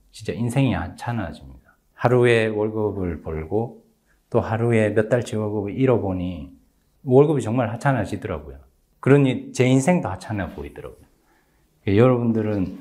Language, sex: Korean, male